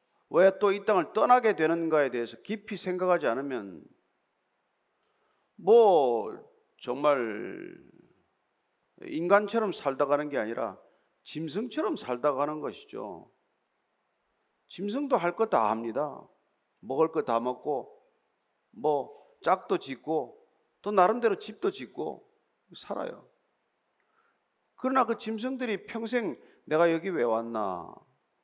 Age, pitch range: 40-59, 150-225 Hz